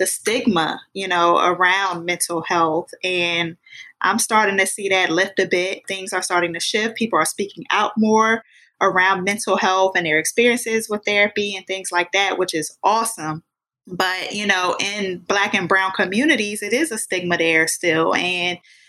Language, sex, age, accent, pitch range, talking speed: English, female, 20-39, American, 180-205 Hz, 180 wpm